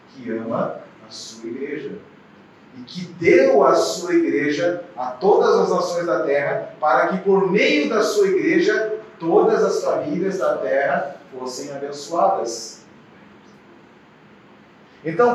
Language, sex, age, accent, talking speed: Portuguese, male, 40-59, Brazilian, 125 wpm